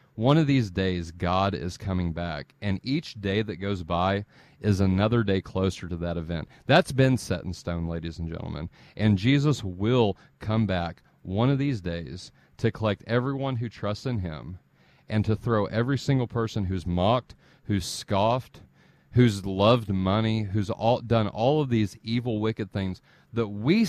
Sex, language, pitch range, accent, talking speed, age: male, English, 95-130 Hz, American, 170 wpm, 40-59